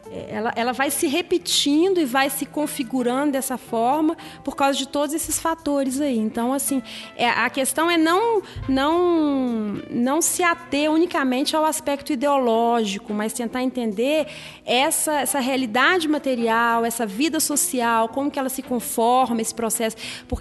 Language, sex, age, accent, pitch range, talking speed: Portuguese, female, 30-49, Brazilian, 230-305 Hz, 145 wpm